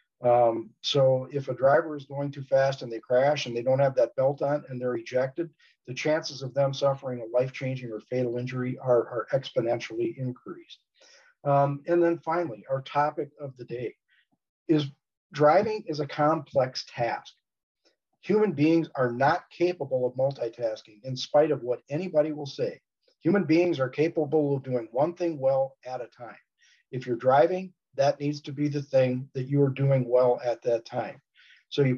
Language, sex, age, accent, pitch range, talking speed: English, male, 50-69, American, 125-155 Hz, 180 wpm